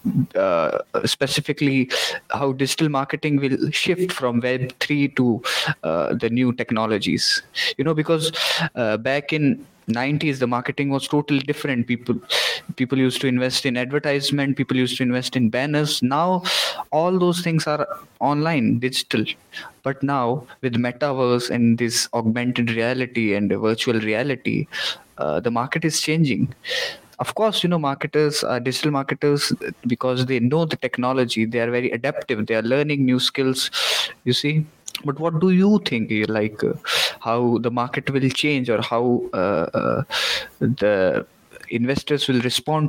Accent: native